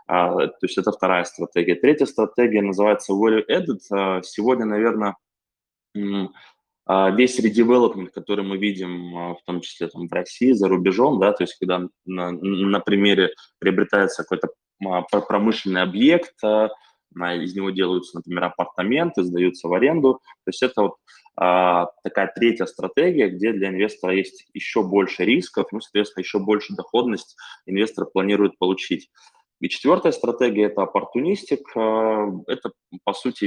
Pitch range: 95-110 Hz